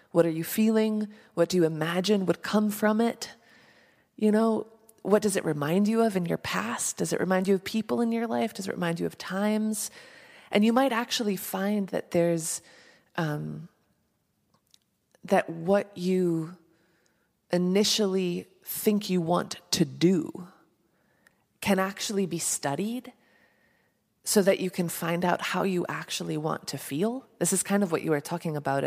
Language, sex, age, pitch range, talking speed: English, female, 20-39, 165-215 Hz, 165 wpm